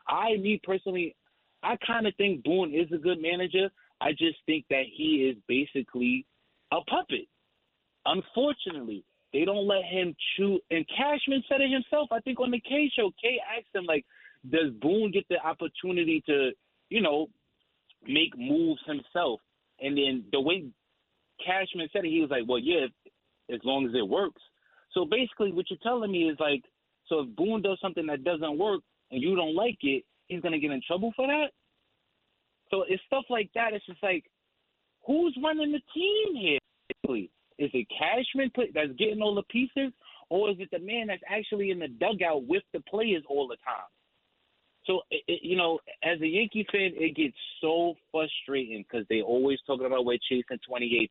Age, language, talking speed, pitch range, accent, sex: 30-49, English, 185 wpm, 155-235 Hz, American, male